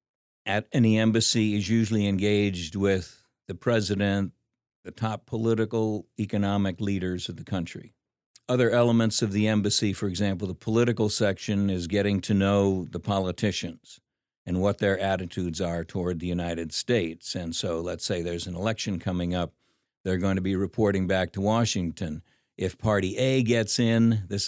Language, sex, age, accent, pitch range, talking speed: English, male, 50-69, American, 90-110 Hz, 160 wpm